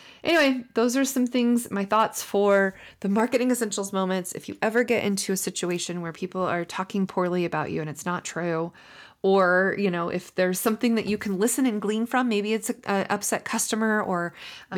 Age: 20-39